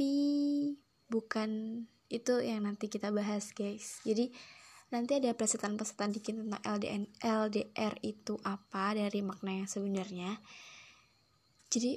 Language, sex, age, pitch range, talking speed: Indonesian, female, 10-29, 210-235 Hz, 115 wpm